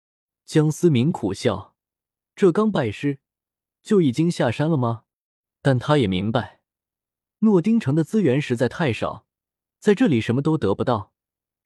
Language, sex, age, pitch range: Chinese, male, 20-39, 110-160 Hz